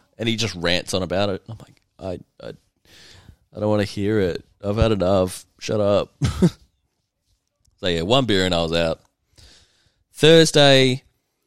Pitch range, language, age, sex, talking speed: 95-120 Hz, English, 20-39, male, 160 wpm